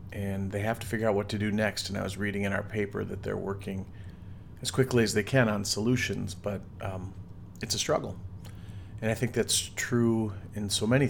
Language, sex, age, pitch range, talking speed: English, male, 40-59, 100-115 Hz, 215 wpm